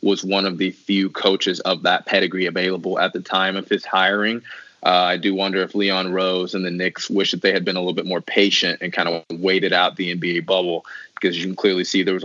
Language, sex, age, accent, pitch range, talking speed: English, male, 20-39, American, 90-100 Hz, 250 wpm